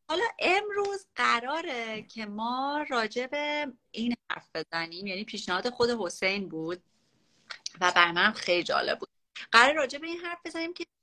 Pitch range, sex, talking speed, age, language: 180-235 Hz, female, 140 wpm, 30-49, Persian